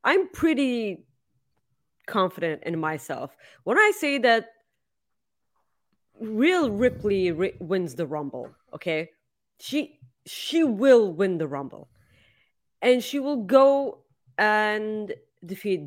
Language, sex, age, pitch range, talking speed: English, female, 30-49, 175-240 Hz, 105 wpm